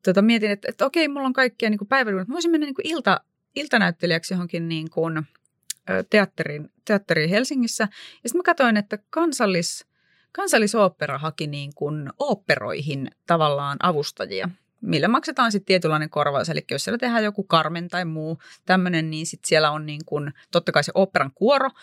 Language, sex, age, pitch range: Finnish, female, 30-49, 155-230 Hz